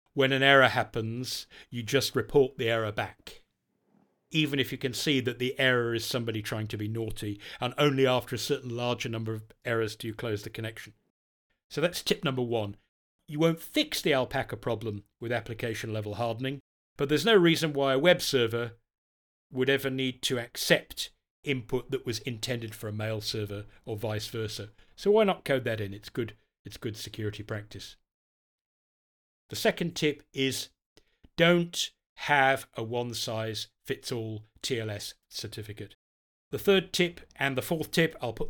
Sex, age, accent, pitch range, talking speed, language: male, 40-59, British, 110-140 Hz, 165 wpm, English